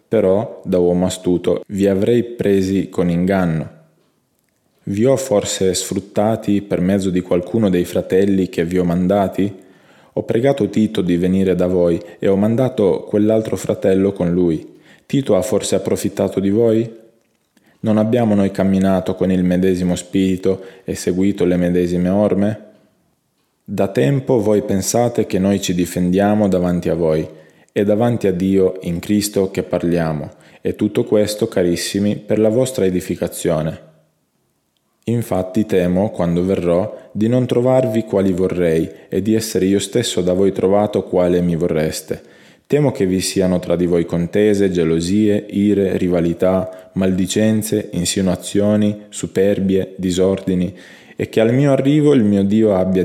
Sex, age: male, 20-39